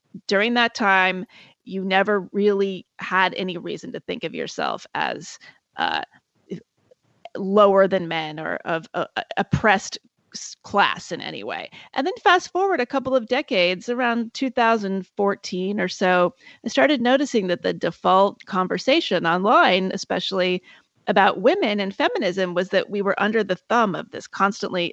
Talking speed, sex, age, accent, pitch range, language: 145 wpm, female, 30-49, American, 185-240 Hz, English